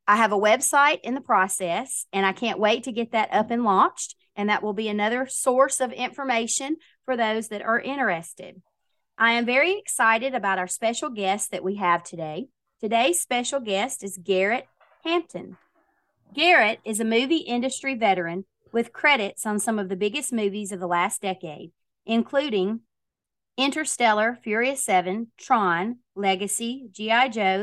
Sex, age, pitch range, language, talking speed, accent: female, 30-49, 190-250 Hz, English, 160 wpm, American